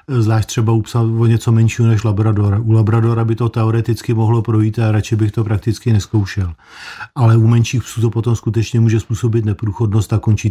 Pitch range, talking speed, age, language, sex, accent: 110-125 Hz, 190 wpm, 50-69, Czech, male, native